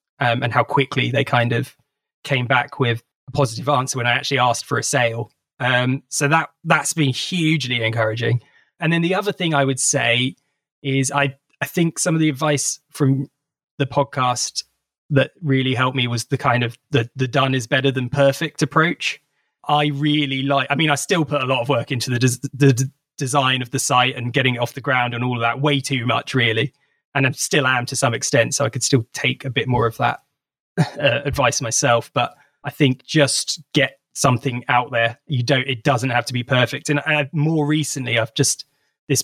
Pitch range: 130-145 Hz